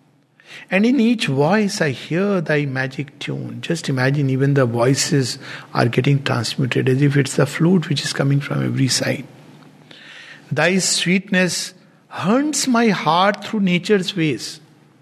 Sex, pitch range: male, 145-195 Hz